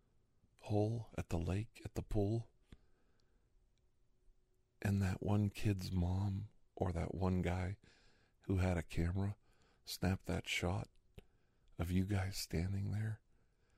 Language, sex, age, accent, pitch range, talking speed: English, male, 50-69, American, 90-115 Hz, 120 wpm